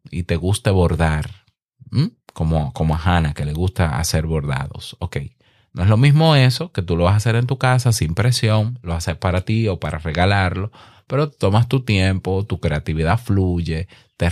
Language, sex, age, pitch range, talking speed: Spanish, male, 30-49, 90-125 Hz, 195 wpm